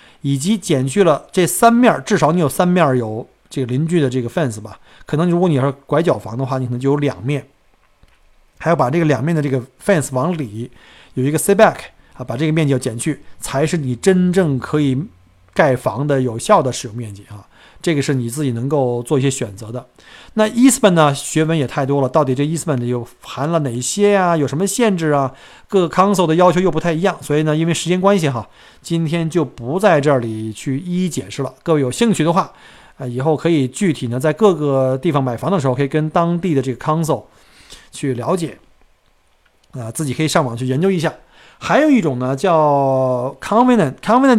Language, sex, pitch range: Chinese, male, 130-175 Hz